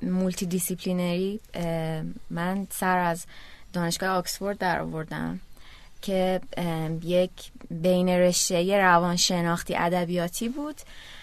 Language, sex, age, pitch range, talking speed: Persian, female, 20-39, 180-230 Hz, 90 wpm